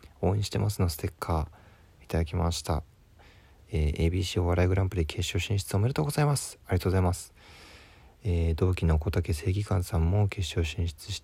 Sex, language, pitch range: male, Japanese, 85-105 Hz